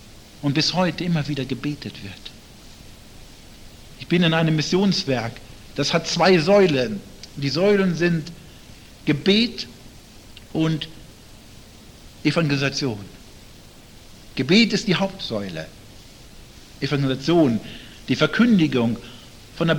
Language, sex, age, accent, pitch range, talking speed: German, male, 60-79, German, 110-165 Hz, 95 wpm